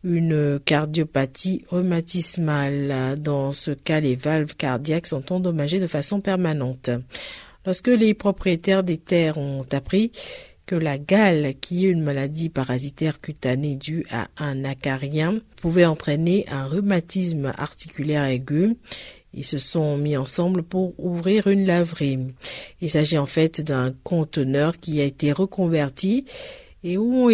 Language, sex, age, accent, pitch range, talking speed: French, female, 50-69, French, 145-185 Hz, 135 wpm